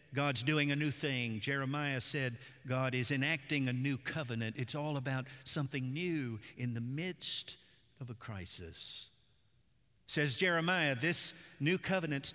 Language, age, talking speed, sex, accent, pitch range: English, 50-69, 140 wpm, male, American, 120-150 Hz